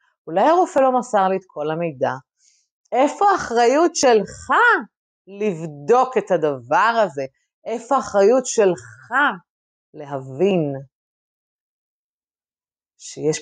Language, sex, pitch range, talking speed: Hebrew, female, 155-240 Hz, 90 wpm